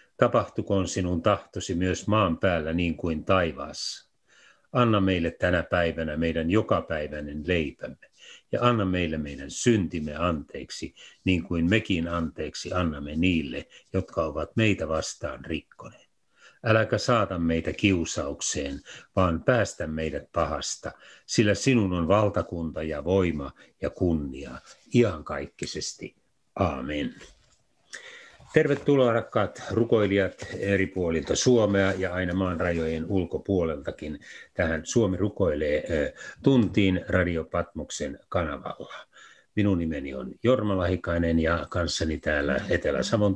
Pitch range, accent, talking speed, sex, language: 80-105 Hz, native, 105 wpm, male, Finnish